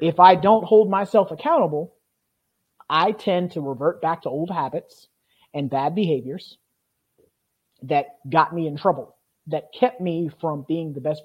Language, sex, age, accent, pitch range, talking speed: English, male, 30-49, American, 150-180 Hz, 155 wpm